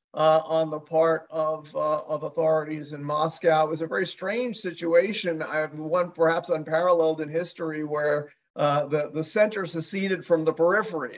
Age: 50-69